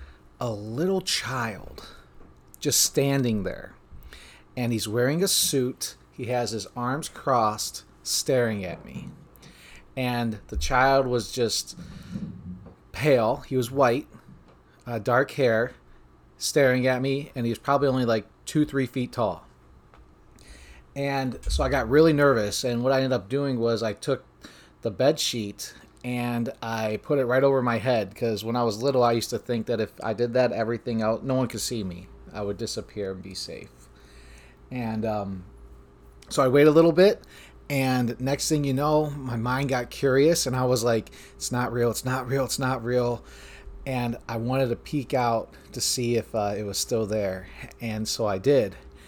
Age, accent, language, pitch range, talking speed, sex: 30-49, American, English, 100-135 Hz, 180 wpm, male